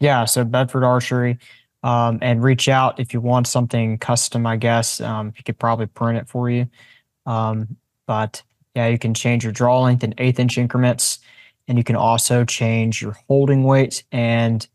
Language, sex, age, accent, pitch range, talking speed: English, male, 20-39, American, 115-130 Hz, 180 wpm